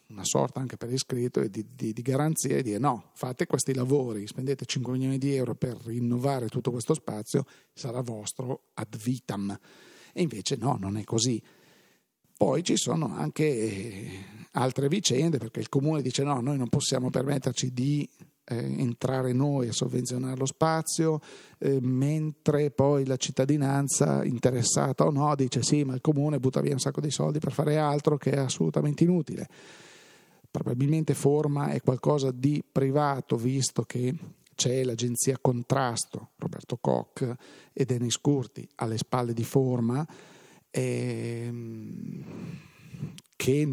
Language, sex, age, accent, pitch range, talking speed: Italian, male, 40-59, native, 125-150 Hz, 145 wpm